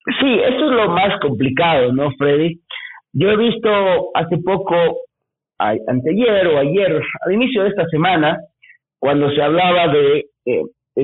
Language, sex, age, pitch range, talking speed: Spanish, male, 50-69, 140-205 Hz, 145 wpm